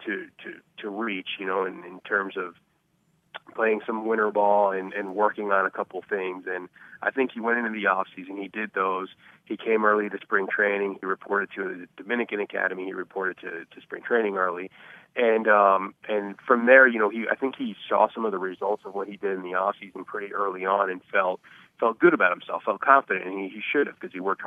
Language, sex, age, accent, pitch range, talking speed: English, male, 30-49, American, 95-110 Hz, 235 wpm